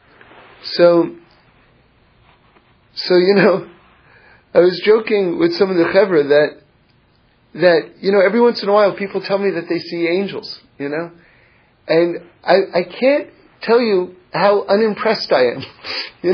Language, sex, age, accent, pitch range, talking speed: English, male, 40-59, American, 180-260 Hz, 145 wpm